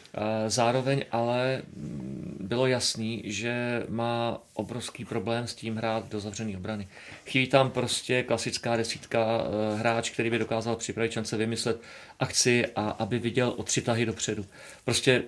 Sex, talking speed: male, 140 wpm